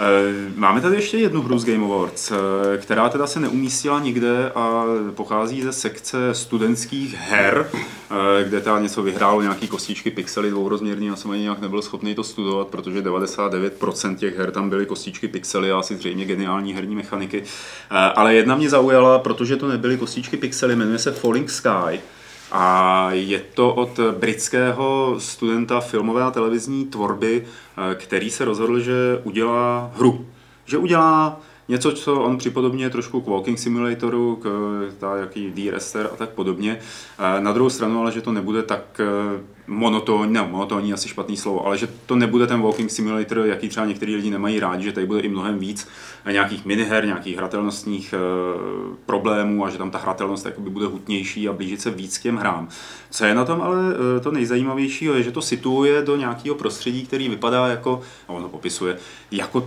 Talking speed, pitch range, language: 170 wpm, 100-125 Hz, Czech